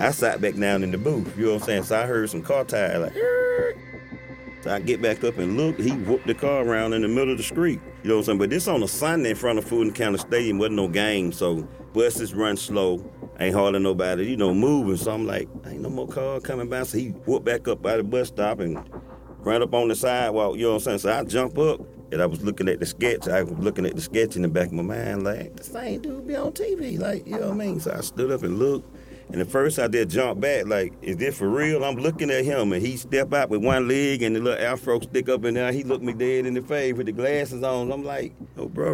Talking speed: 280 wpm